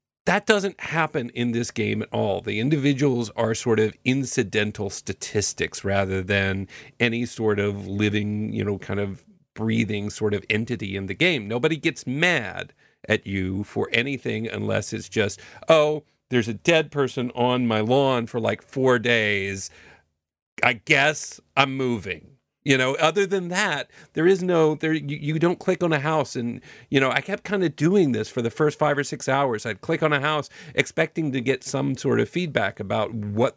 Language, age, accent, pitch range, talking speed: English, 40-59, American, 105-145 Hz, 185 wpm